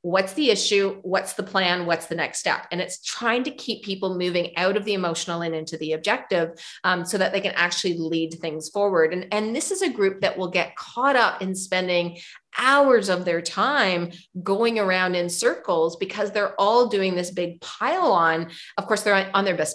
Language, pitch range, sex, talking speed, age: English, 170-205 Hz, female, 210 wpm, 40-59